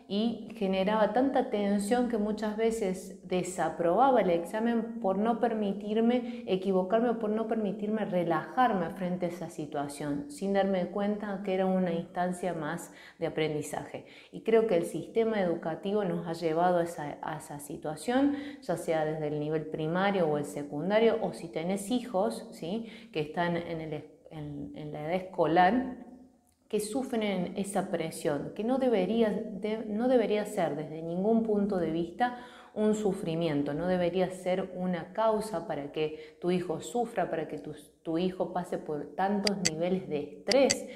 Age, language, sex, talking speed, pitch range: 30-49, Spanish, female, 155 wpm, 160-215 Hz